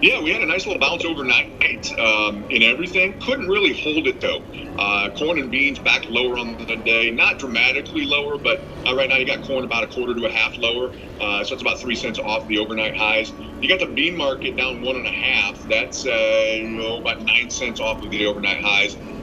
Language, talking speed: English, 230 wpm